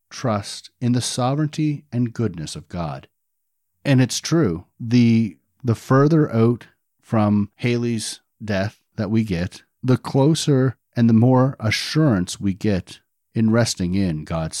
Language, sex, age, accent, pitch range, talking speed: English, male, 50-69, American, 95-145 Hz, 135 wpm